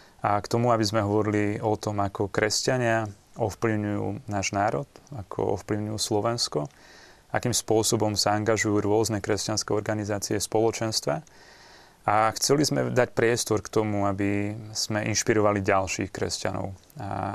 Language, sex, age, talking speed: Slovak, male, 30-49, 130 wpm